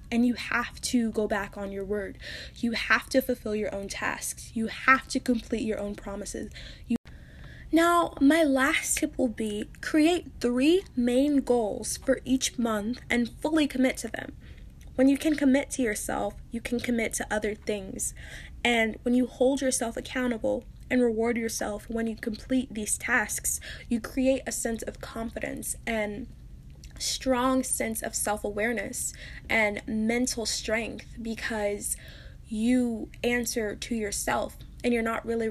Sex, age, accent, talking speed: female, 10-29, American, 155 wpm